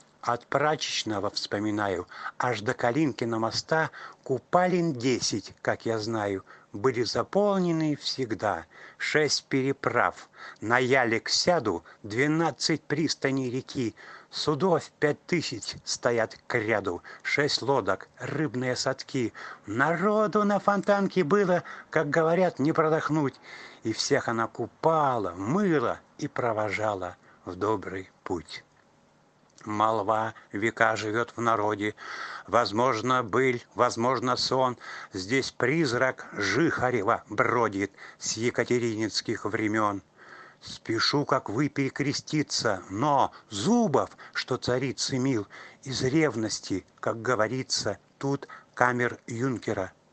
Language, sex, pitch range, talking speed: Russian, male, 110-150 Hz, 100 wpm